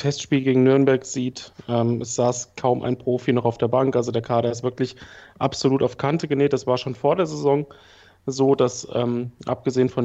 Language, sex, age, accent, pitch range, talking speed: German, male, 30-49, German, 125-140 Hz, 205 wpm